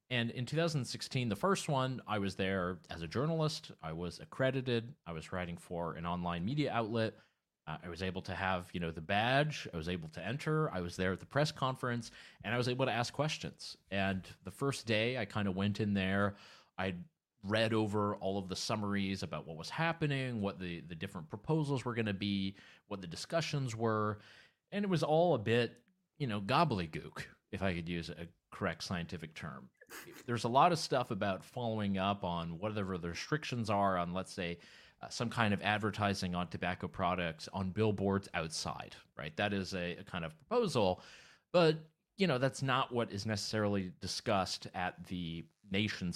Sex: male